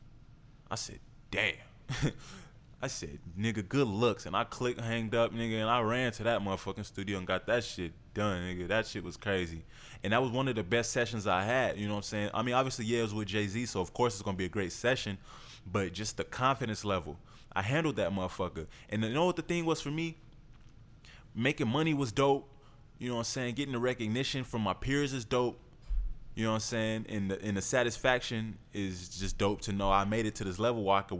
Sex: male